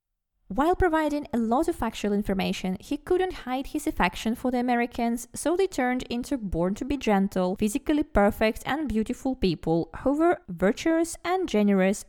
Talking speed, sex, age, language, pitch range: 150 wpm, female, 20-39, English, 190-280 Hz